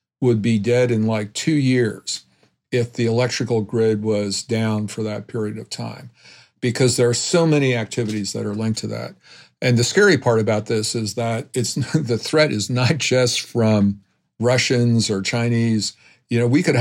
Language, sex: English, male